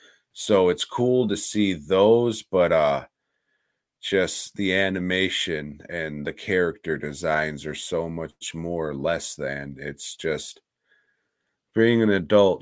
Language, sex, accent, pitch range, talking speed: English, male, American, 80-95 Hz, 130 wpm